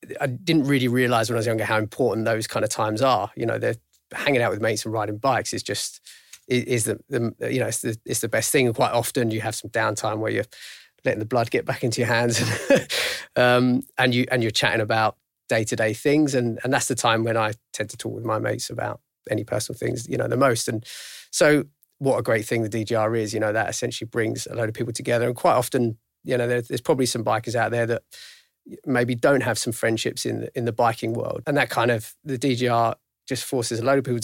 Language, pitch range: English, 115-125 Hz